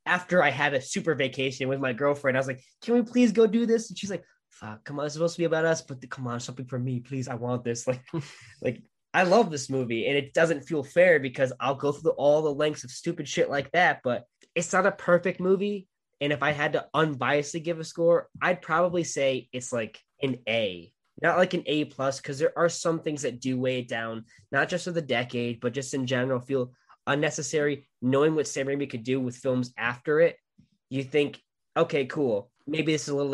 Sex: male